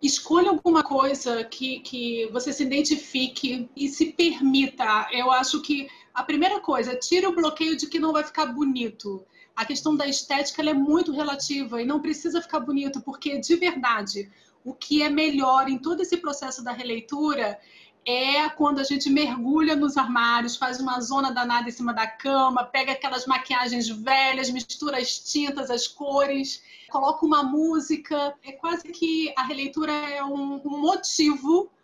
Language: Portuguese